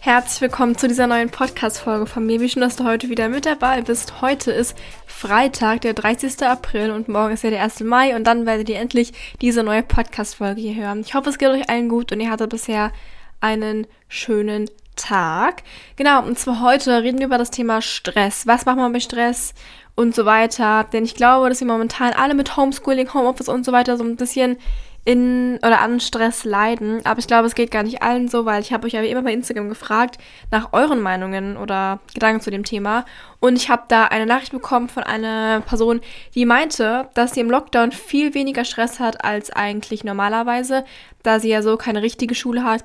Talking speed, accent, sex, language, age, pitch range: 210 wpm, German, female, German, 10-29, 220-250 Hz